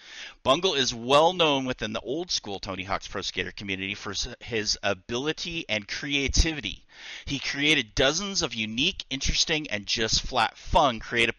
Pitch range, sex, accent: 105-140 Hz, male, American